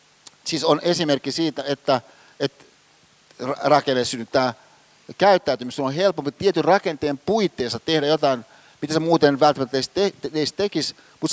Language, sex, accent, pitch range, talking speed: Finnish, male, native, 135-160 Hz, 150 wpm